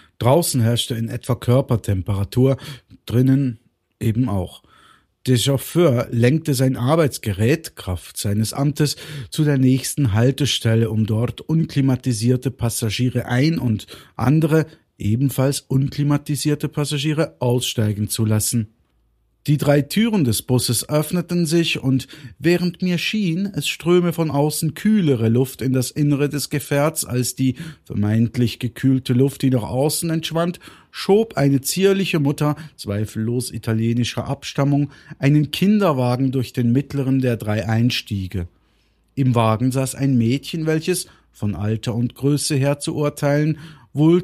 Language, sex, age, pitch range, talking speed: German, male, 50-69, 115-145 Hz, 125 wpm